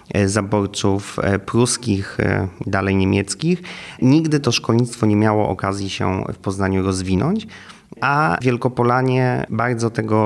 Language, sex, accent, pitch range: Polish, male, native, 100-120 Hz